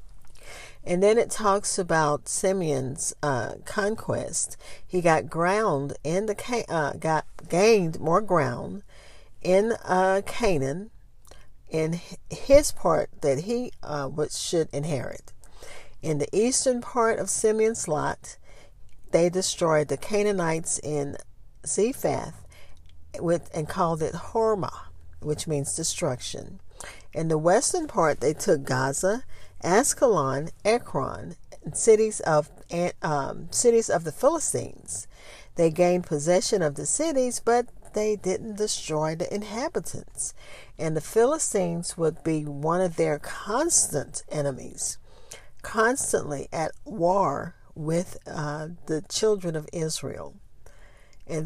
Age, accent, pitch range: 50-69, American, 150-205 Hz